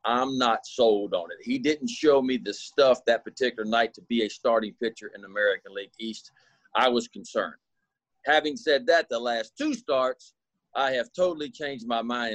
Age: 40-59